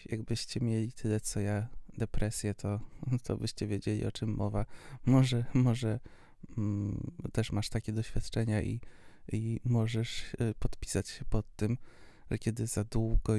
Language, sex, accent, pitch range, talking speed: Polish, male, native, 105-120 Hz, 145 wpm